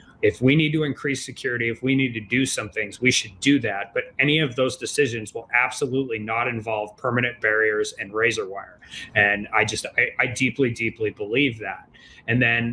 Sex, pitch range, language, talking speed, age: male, 115-160 Hz, English, 200 wpm, 30-49